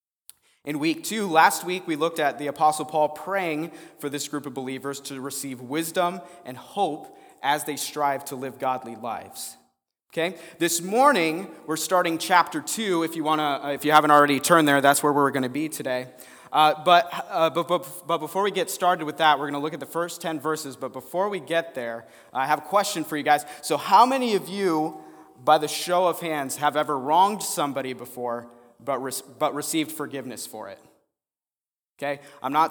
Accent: American